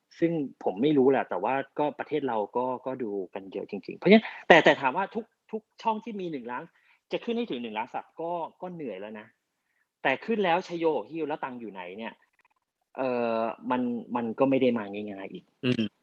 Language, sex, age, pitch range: Thai, male, 30-49, 120-170 Hz